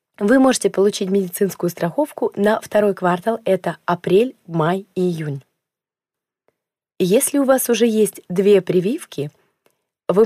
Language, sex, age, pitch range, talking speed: Russian, female, 20-39, 175-210 Hz, 125 wpm